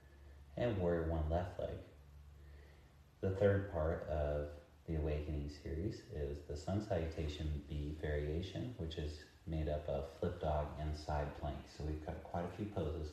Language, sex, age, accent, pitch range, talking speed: English, male, 30-49, American, 75-90 Hz, 160 wpm